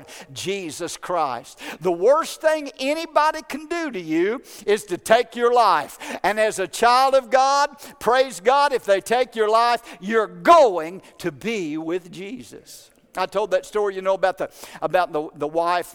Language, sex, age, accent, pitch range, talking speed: English, male, 60-79, American, 155-215 Hz, 175 wpm